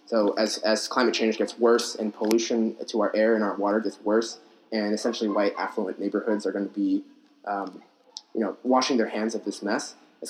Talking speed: 210 wpm